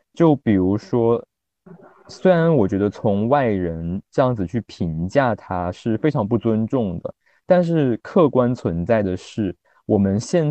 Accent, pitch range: native, 90-140 Hz